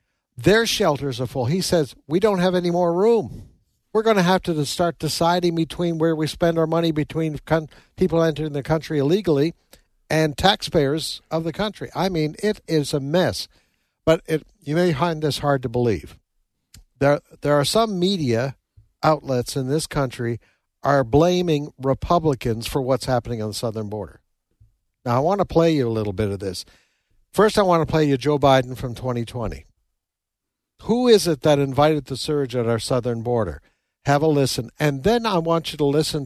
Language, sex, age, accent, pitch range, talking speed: English, male, 60-79, American, 120-160 Hz, 185 wpm